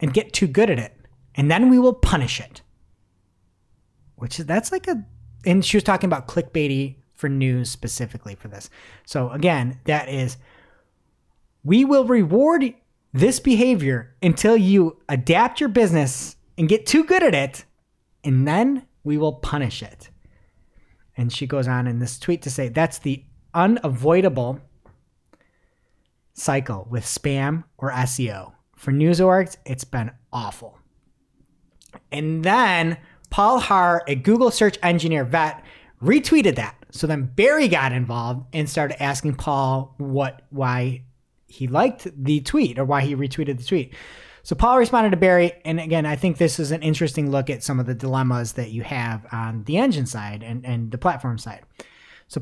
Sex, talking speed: male, 160 wpm